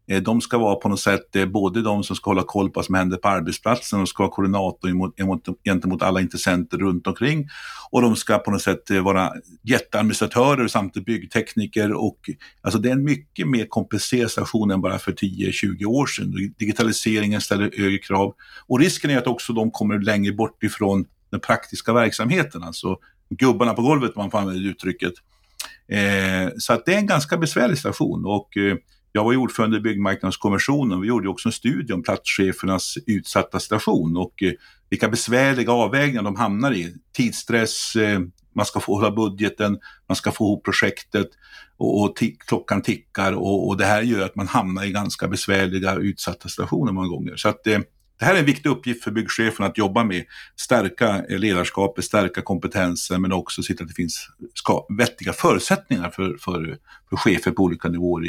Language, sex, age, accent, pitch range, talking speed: Swedish, male, 50-69, native, 95-115 Hz, 175 wpm